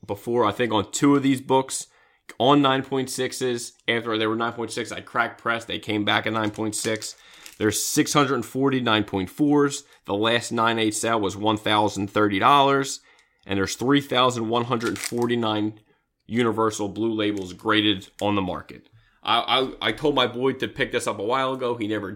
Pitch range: 105-130 Hz